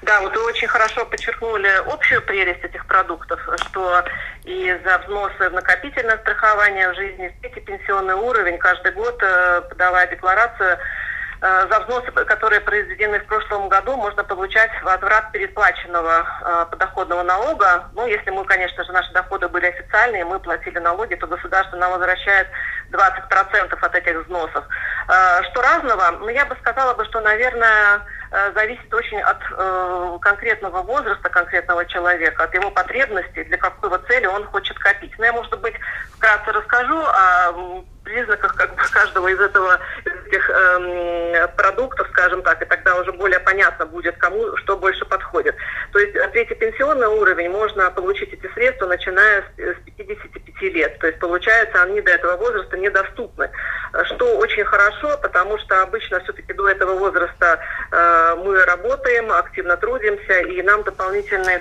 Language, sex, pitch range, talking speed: Russian, female, 180-230 Hz, 150 wpm